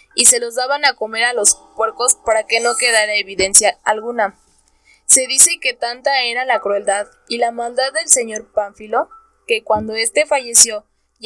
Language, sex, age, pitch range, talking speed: Spanish, female, 10-29, 220-275 Hz, 175 wpm